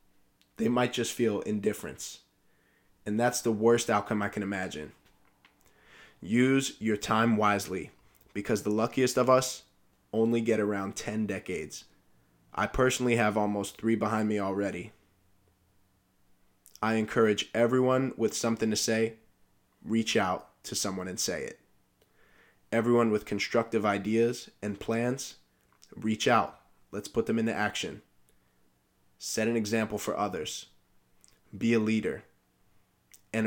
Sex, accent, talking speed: male, American, 125 wpm